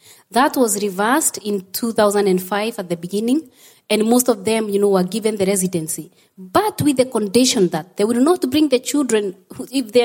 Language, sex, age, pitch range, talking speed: English, female, 20-39, 200-255 Hz, 185 wpm